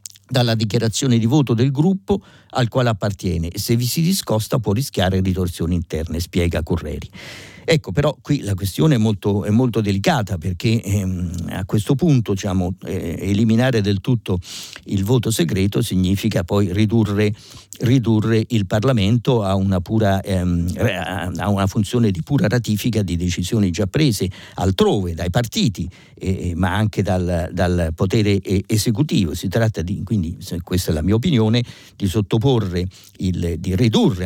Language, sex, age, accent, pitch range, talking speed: Italian, male, 50-69, native, 90-115 Hz, 155 wpm